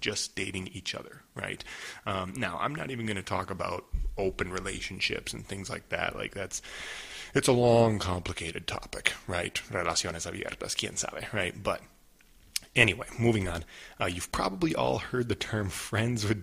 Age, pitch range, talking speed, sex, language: 20-39, 95-125 Hz, 170 wpm, male, English